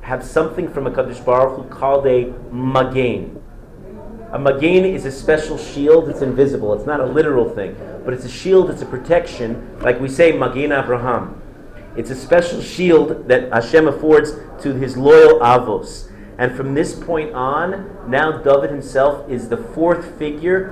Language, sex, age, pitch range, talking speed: English, male, 40-59, 130-160 Hz, 165 wpm